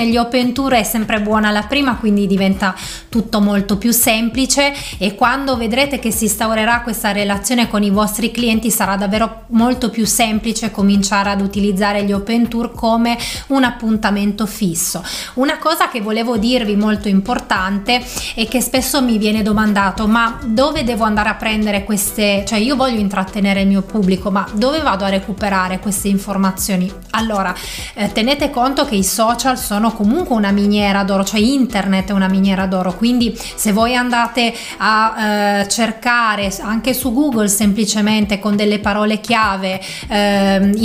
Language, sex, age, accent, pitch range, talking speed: Italian, female, 30-49, native, 205-230 Hz, 160 wpm